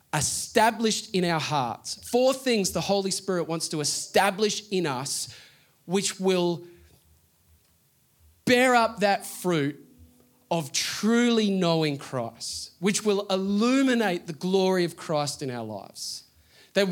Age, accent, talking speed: 30-49, Australian, 125 wpm